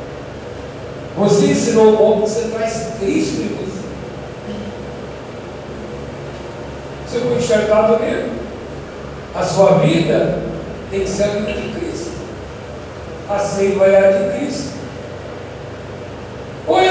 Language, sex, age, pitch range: Portuguese, male, 60-79, 200-240 Hz